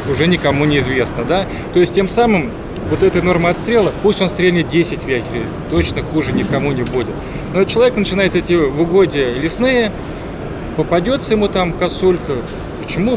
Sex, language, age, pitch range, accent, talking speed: male, Russian, 20-39, 145-180 Hz, native, 160 wpm